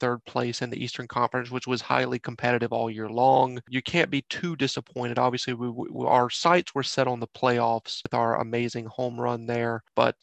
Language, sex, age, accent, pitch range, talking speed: English, male, 30-49, American, 120-130 Hz, 195 wpm